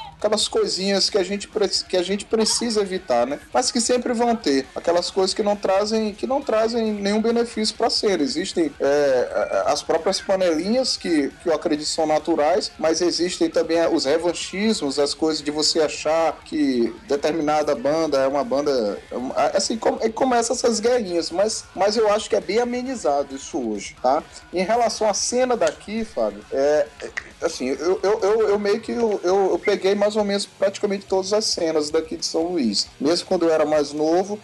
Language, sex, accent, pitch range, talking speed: Portuguese, male, Brazilian, 150-205 Hz, 185 wpm